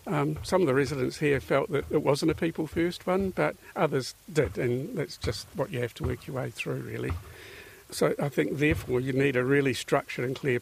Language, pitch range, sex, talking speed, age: English, 125-145 Hz, male, 220 wpm, 60-79